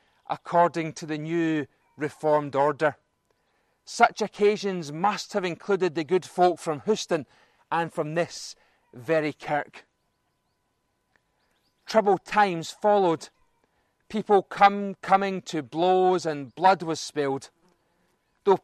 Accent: British